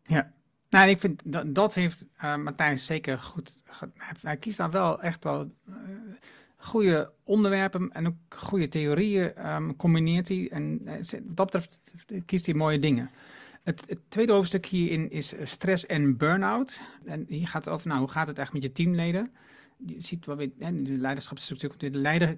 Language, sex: Dutch, male